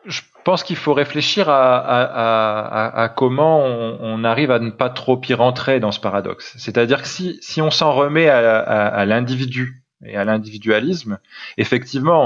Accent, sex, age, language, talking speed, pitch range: French, male, 20-39, French, 180 wpm, 105-130 Hz